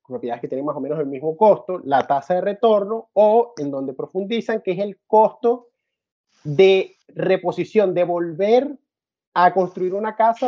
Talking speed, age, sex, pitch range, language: 165 wpm, 30-49, male, 175-215 Hz, Spanish